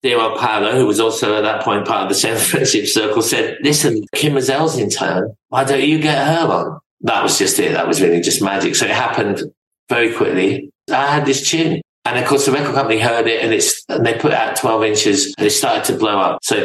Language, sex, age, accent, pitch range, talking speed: English, male, 50-69, British, 110-145 Hz, 250 wpm